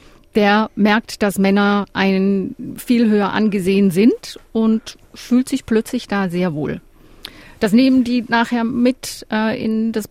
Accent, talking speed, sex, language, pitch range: German, 140 wpm, female, German, 195-240 Hz